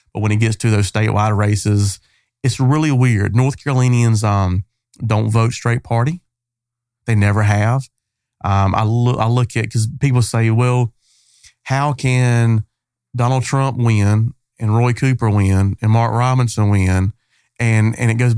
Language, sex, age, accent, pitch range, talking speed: English, male, 30-49, American, 110-125 Hz, 155 wpm